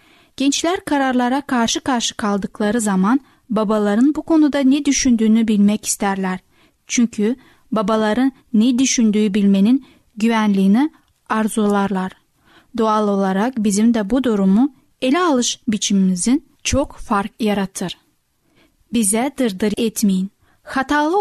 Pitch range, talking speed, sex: 210-265 Hz, 100 wpm, female